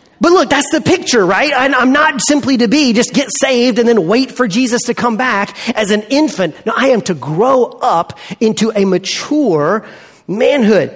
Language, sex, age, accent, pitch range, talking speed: English, male, 30-49, American, 210-280 Hz, 190 wpm